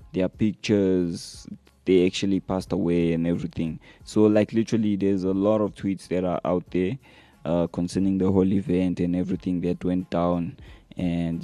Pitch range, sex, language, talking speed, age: 90-110 Hz, male, English, 165 wpm, 20-39